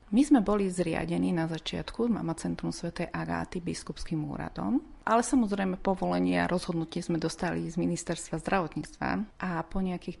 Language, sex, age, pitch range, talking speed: Slovak, female, 30-49, 150-185 Hz, 140 wpm